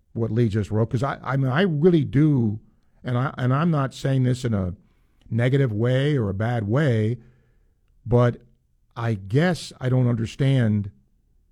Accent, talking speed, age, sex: American, 165 wpm, 50-69, male